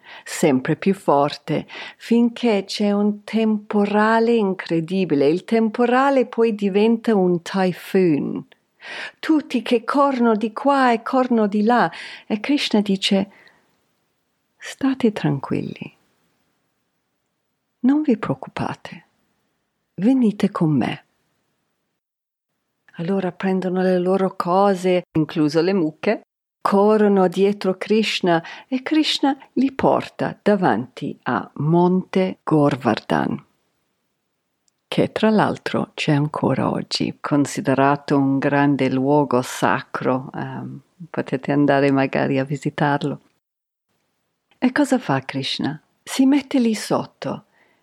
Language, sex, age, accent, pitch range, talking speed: Italian, female, 50-69, native, 155-240 Hz, 95 wpm